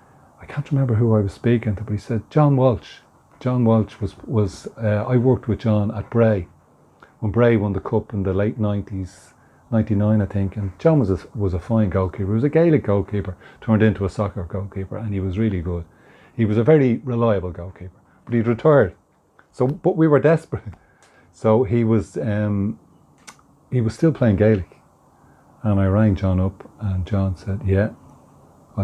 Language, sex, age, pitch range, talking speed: English, male, 30-49, 95-110 Hz, 190 wpm